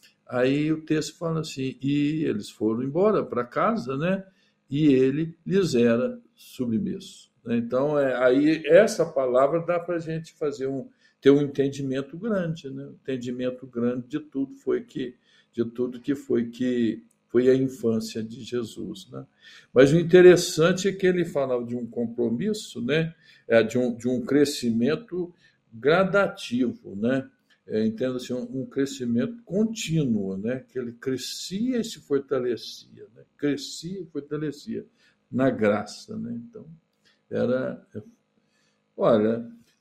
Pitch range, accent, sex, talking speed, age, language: 120-190 Hz, Brazilian, male, 135 wpm, 60-79, Portuguese